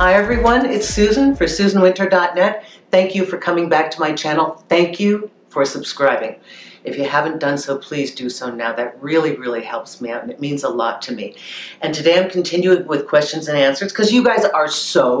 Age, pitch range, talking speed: 50-69, 125-185 Hz, 210 wpm